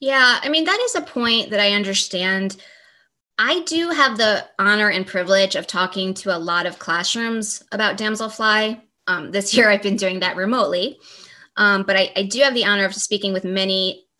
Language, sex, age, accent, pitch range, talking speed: English, female, 20-39, American, 190-225 Hz, 195 wpm